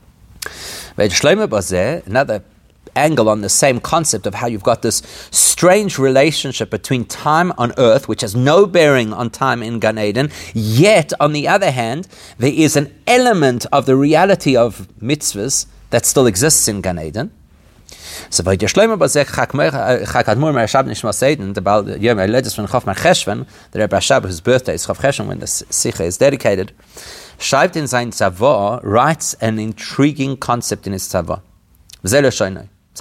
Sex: male